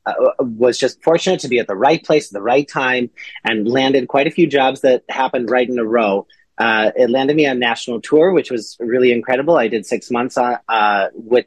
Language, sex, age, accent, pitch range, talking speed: English, male, 30-49, American, 115-140 Hz, 230 wpm